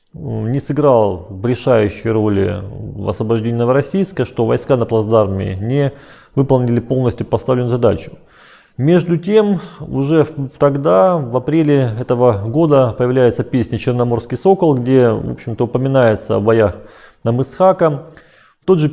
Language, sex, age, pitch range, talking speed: Russian, male, 30-49, 115-150 Hz, 125 wpm